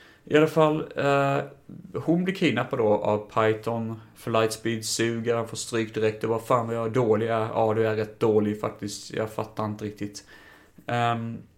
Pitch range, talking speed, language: 105-135 Hz, 175 wpm, Swedish